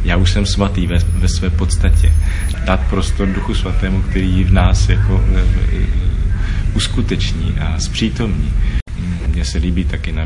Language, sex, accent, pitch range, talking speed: Czech, male, native, 80-95 Hz, 150 wpm